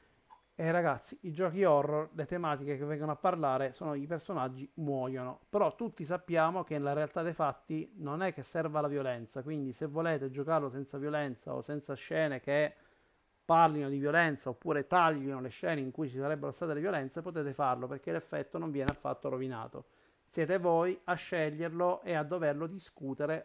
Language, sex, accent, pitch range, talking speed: Italian, male, native, 140-170 Hz, 175 wpm